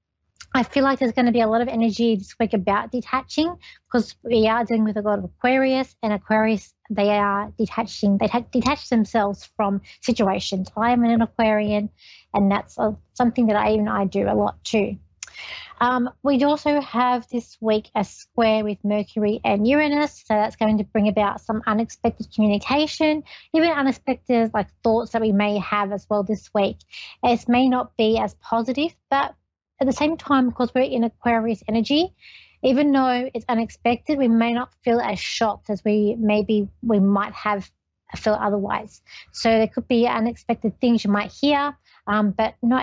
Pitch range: 205-245 Hz